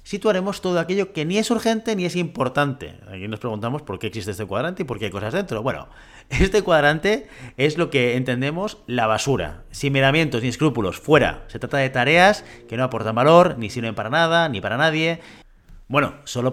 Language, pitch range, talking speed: Spanish, 115-165 Hz, 200 wpm